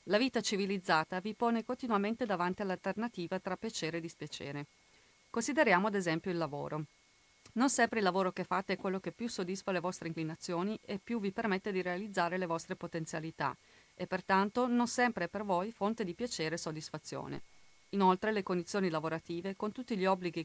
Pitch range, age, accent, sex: 170-220 Hz, 40-59, native, female